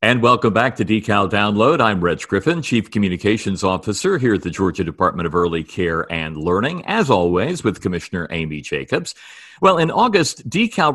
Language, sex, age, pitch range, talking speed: English, male, 50-69, 95-125 Hz, 175 wpm